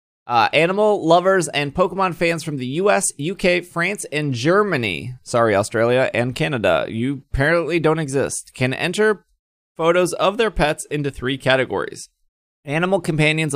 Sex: male